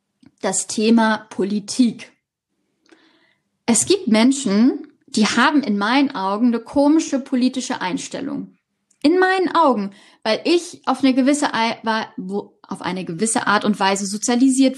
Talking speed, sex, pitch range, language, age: 110 wpm, female, 220-275 Hz, German, 10-29